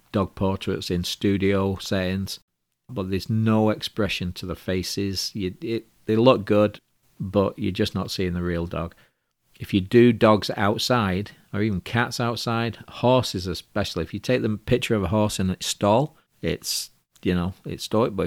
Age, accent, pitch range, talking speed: 40-59, British, 90-110 Hz, 175 wpm